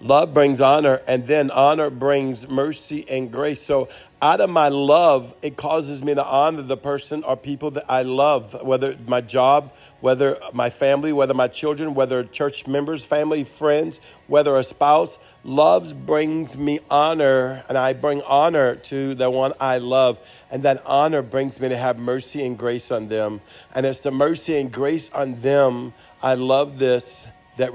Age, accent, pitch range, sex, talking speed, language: 50-69, American, 125-140 Hz, male, 175 wpm, English